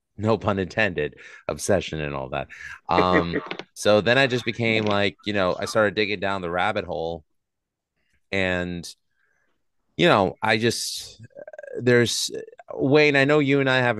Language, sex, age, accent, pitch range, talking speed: English, male, 30-49, American, 95-115 Hz, 160 wpm